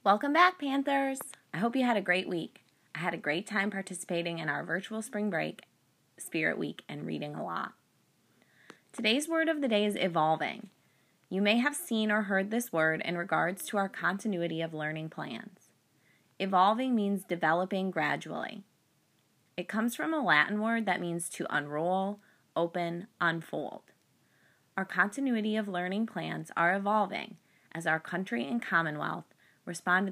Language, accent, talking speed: English, American, 160 wpm